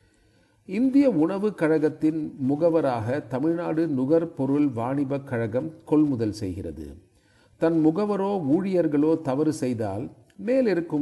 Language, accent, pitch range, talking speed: Tamil, native, 120-170 Hz, 85 wpm